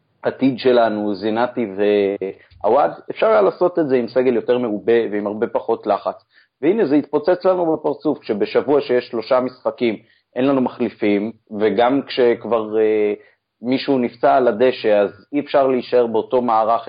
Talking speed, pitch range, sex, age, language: 150 wpm, 110-140 Hz, male, 30-49, Hebrew